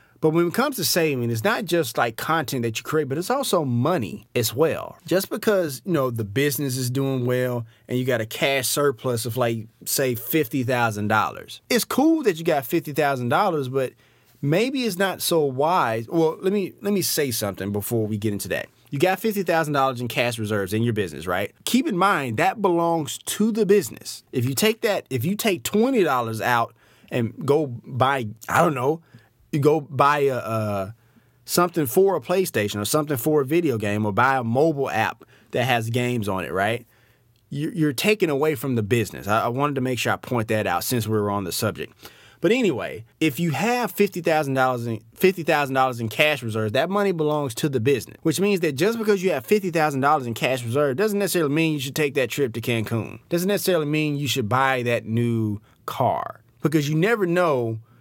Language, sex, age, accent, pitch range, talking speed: English, male, 30-49, American, 120-165 Hz, 210 wpm